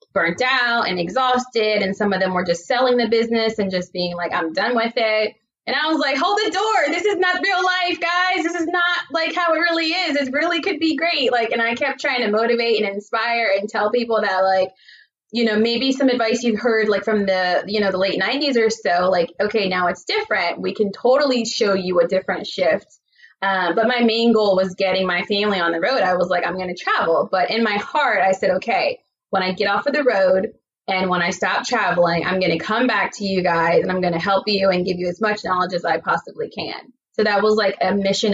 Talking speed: 250 wpm